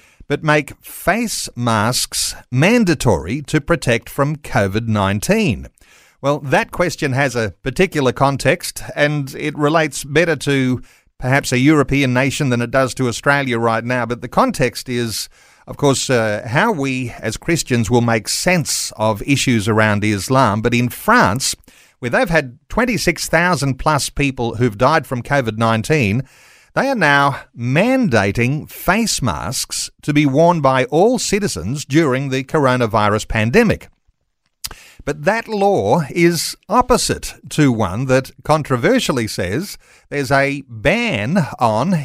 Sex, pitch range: male, 115-150 Hz